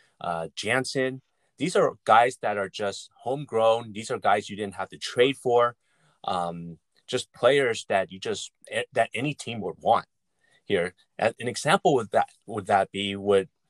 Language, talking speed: English, 165 wpm